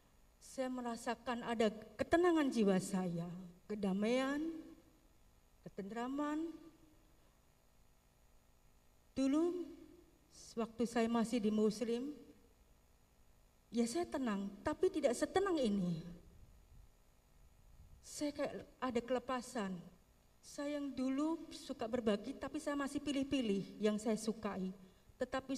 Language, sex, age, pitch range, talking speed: Indonesian, female, 40-59, 210-275 Hz, 90 wpm